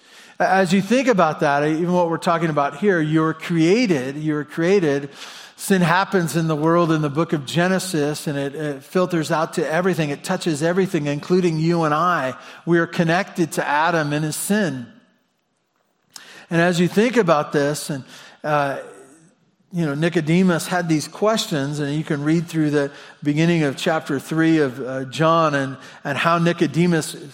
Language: English